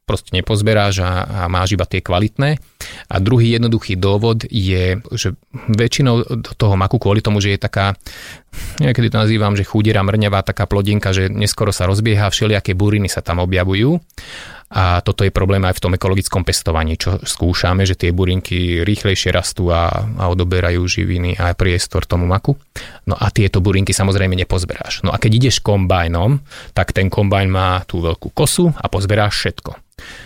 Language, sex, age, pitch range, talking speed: Slovak, male, 30-49, 95-110 Hz, 165 wpm